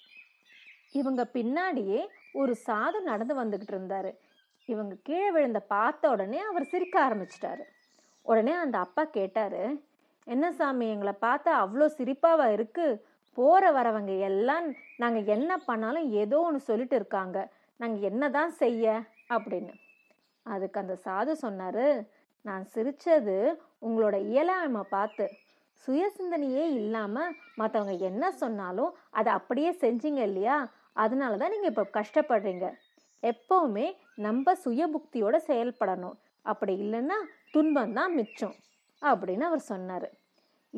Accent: native